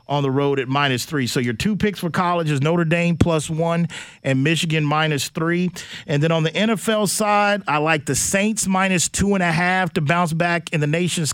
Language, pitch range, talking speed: English, 160-190 Hz, 220 wpm